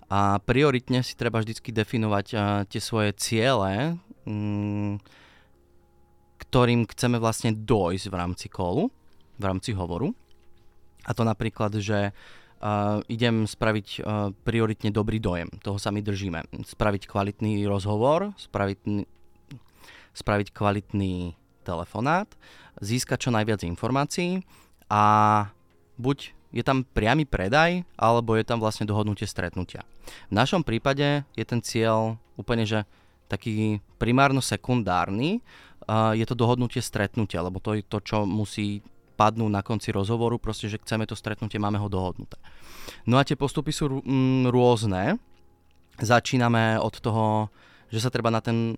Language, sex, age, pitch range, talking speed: Slovak, male, 20-39, 100-120 Hz, 130 wpm